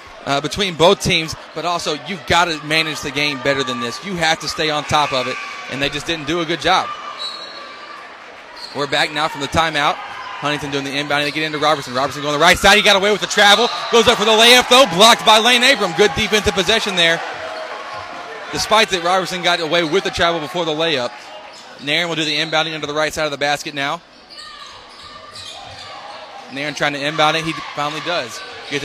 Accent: American